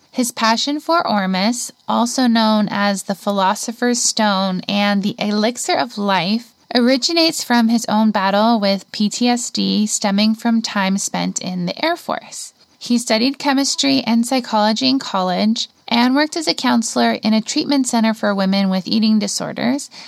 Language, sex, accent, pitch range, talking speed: English, female, American, 210-255 Hz, 150 wpm